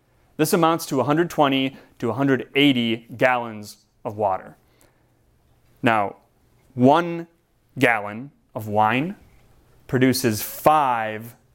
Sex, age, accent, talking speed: male, 30-49, American, 85 wpm